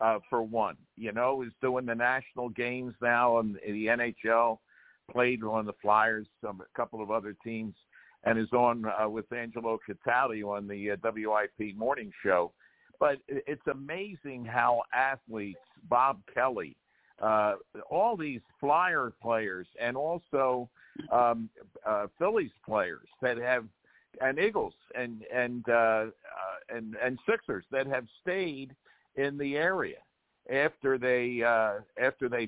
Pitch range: 110-140 Hz